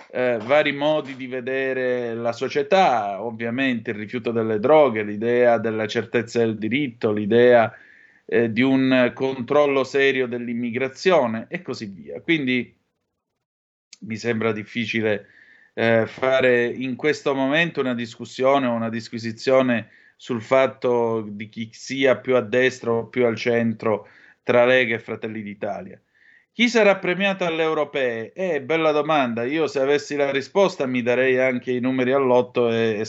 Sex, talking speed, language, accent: male, 140 wpm, Italian, native